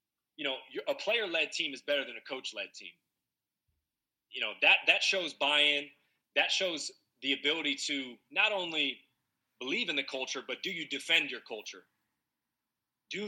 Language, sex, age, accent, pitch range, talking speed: English, male, 30-49, American, 130-160 Hz, 160 wpm